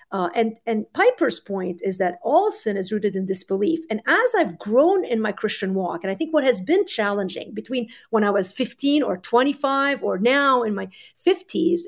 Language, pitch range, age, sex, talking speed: English, 195-290 Hz, 50-69, female, 200 wpm